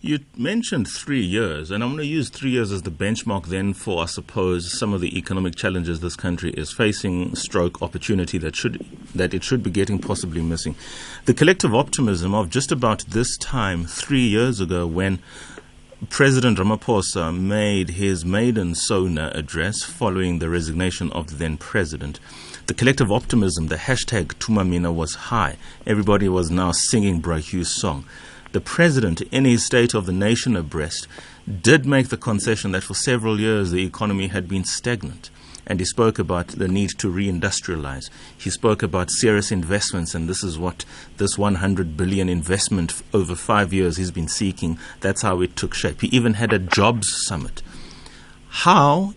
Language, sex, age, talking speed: English, male, 30-49, 170 wpm